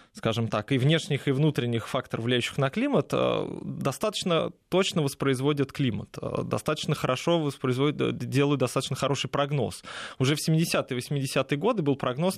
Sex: male